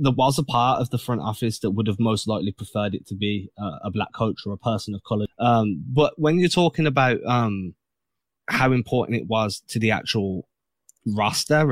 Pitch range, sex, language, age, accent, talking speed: 105-125 Hz, male, English, 20-39, British, 205 wpm